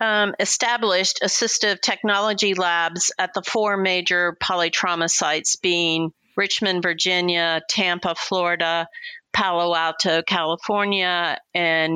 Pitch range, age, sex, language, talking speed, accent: 165-195 Hz, 40-59, female, English, 100 wpm, American